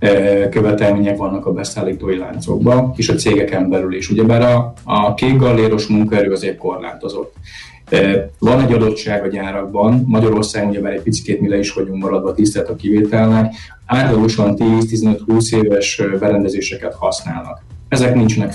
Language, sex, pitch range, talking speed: Hungarian, male, 100-115 Hz, 135 wpm